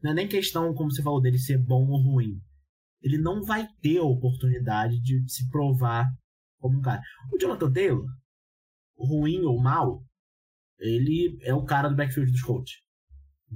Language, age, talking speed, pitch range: Portuguese, 20-39, 175 wpm, 120-145 Hz